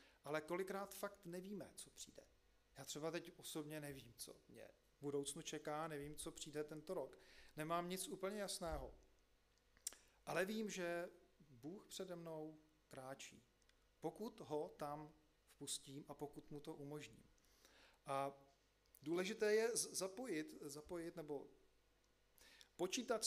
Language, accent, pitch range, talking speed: Czech, native, 135-170 Hz, 125 wpm